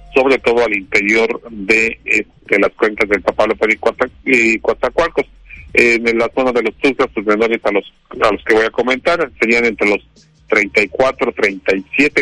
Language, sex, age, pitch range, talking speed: Spanish, male, 50-69, 105-130 Hz, 175 wpm